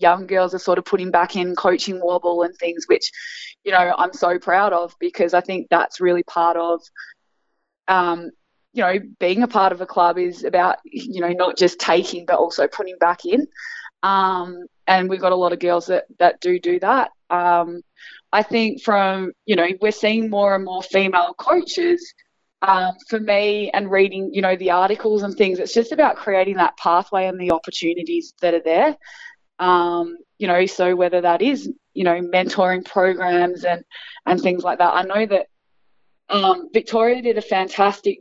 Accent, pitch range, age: Australian, 175-205 Hz, 20-39